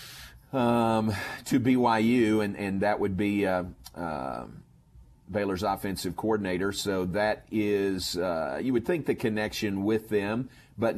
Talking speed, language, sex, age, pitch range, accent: 135 wpm, English, male, 50-69, 95-110 Hz, American